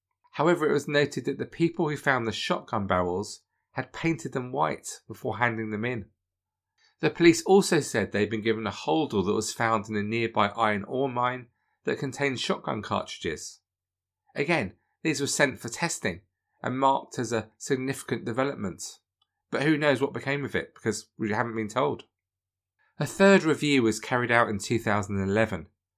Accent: British